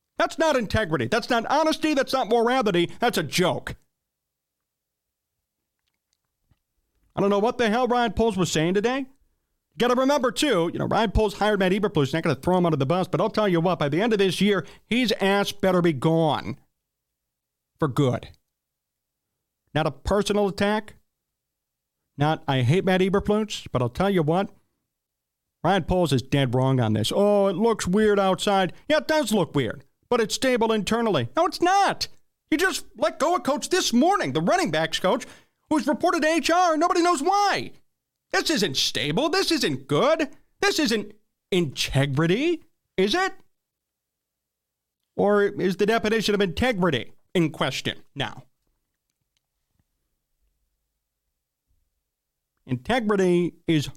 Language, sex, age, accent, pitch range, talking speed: English, male, 40-59, American, 155-250 Hz, 155 wpm